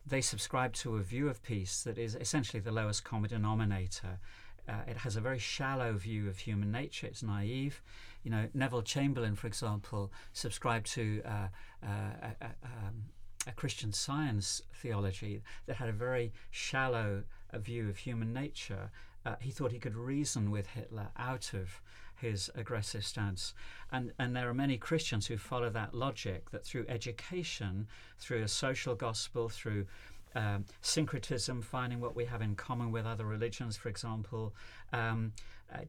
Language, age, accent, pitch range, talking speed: English, 50-69, British, 105-125 Hz, 165 wpm